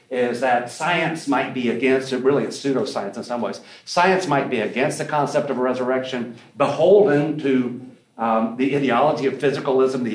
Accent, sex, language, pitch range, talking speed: American, male, English, 130-165 Hz, 175 wpm